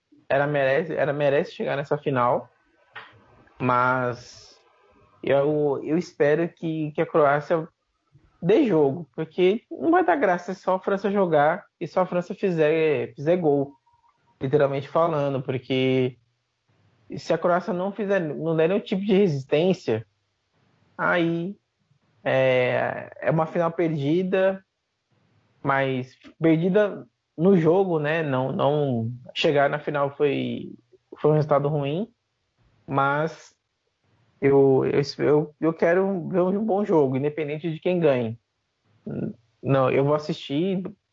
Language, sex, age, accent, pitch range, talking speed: English, male, 20-39, Brazilian, 130-175 Hz, 115 wpm